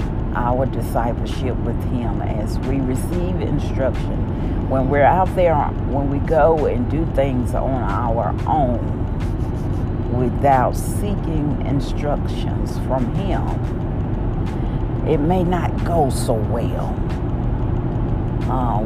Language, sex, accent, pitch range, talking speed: English, female, American, 105-125 Hz, 105 wpm